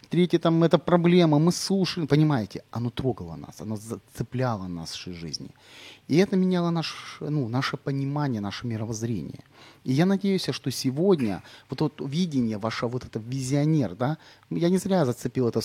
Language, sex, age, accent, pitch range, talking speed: Ukrainian, male, 30-49, native, 120-155 Hz, 155 wpm